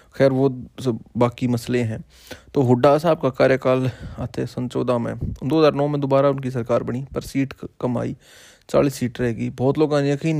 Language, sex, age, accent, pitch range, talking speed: Hindi, male, 20-39, native, 110-130 Hz, 175 wpm